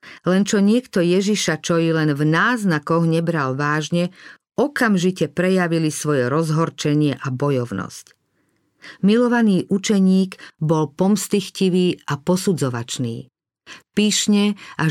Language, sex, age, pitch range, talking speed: Slovak, female, 50-69, 150-185 Hz, 100 wpm